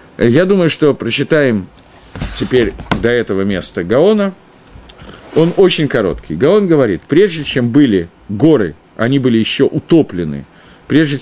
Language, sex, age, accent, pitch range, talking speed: Russian, male, 50-69, native, 110-165 Hz, 125 wpm